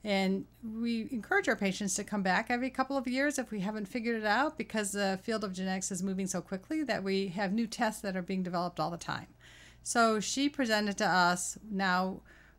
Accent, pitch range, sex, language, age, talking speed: American, 190-225 Hz, female, English, 40-59, 215 wpm